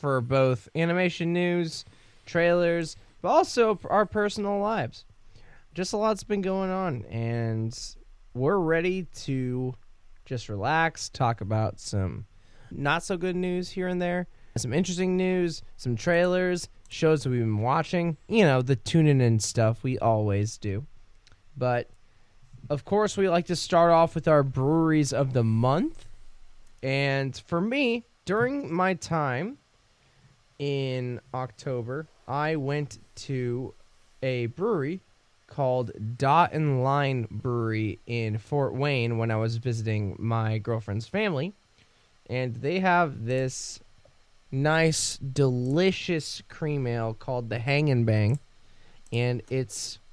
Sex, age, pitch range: male, 20-39, 115-165 Hz